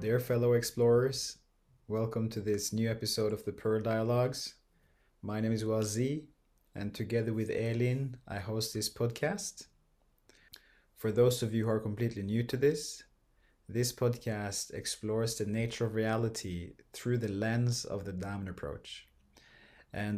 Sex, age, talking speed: male, 30-49, 145 wpm